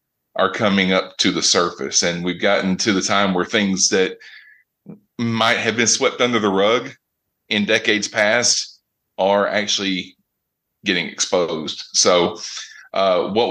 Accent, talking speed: American, 140 wpm